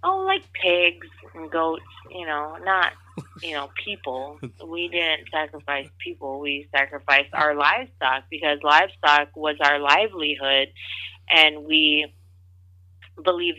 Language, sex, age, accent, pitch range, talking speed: English, female, 20-39, American, 130-165 Hz, 120 wpm